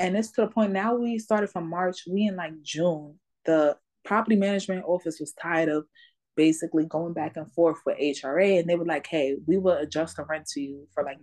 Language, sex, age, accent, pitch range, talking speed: English, female, 20-39, American, 160-200 Hz, 225 wpm